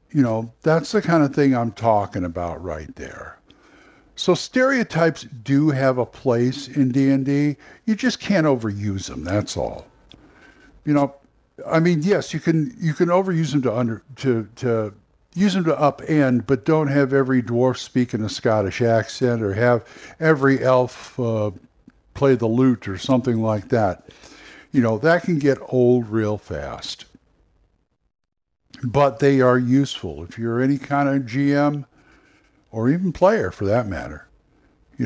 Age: 60-79